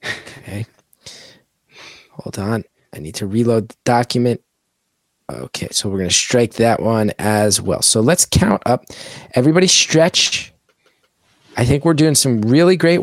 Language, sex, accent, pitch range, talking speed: English, male, American, 110-135 Hz, 145 wpm